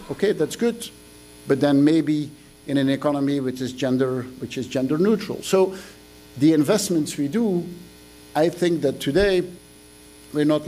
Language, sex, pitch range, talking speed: English, male, 115-150 Hz, 150 wpm